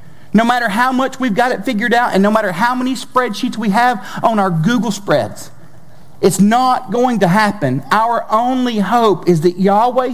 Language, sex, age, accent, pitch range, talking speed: English, male, 50-69, American, 160-240 Hz, 190 wpm